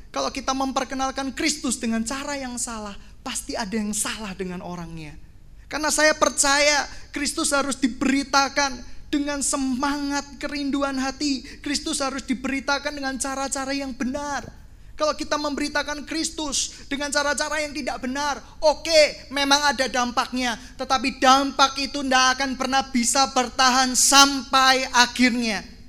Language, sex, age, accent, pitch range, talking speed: Indonesian, male, 20-39, native, 255-290 Hz, 125 wpm